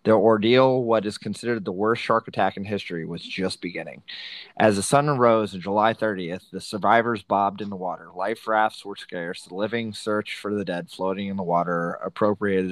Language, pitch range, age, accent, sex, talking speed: English, 95-110 Hz, 20-39, American, male, 200 wpm